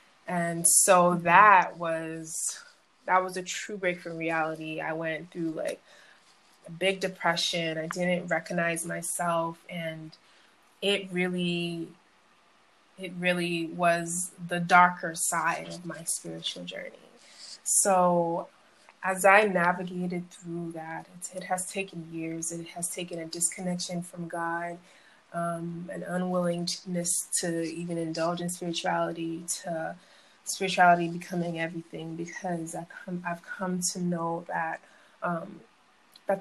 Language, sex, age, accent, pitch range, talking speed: English, female, 20-39, American, 170-185 Hz, 120 wpm